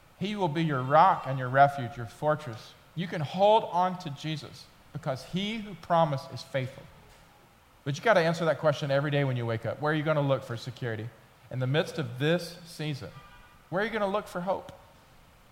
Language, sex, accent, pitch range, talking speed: English, male, American, 115-155 Hz, 220 wpm